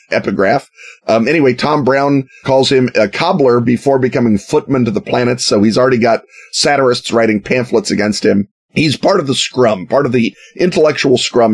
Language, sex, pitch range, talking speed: English, male, 105-145 Hz, 175 wpm